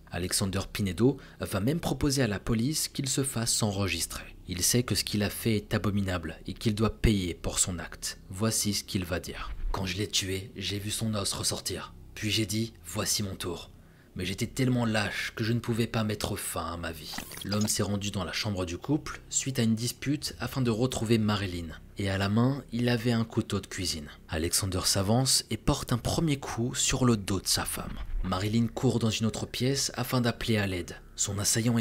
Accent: French